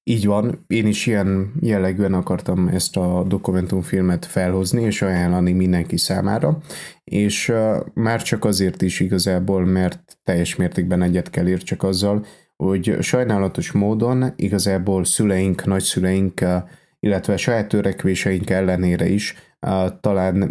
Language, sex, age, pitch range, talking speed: Hungarian, male, 20-39, 90-105 Hz, 120 wpm